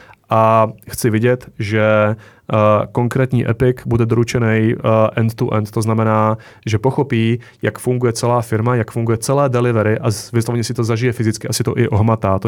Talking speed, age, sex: 165 wpm, 30-49, male